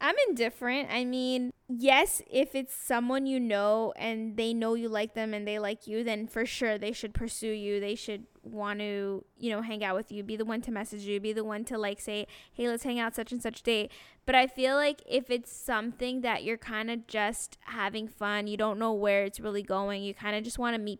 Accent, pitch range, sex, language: American, 215-255 Hz, female, English